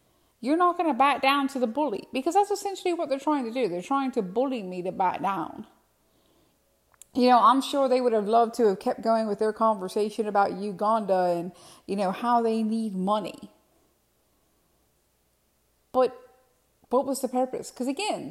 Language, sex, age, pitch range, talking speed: English, female, 30-49, 205-275 Hz, 185 wpm